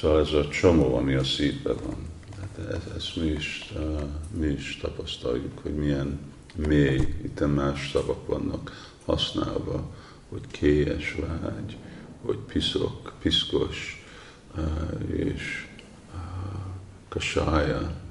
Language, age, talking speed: Hungarian, 50-69, 115 wpm